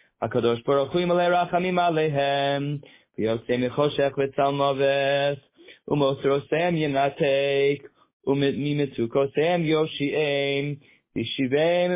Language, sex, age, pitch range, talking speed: English, male, 20-39, 130-160 Hz, 110 wpm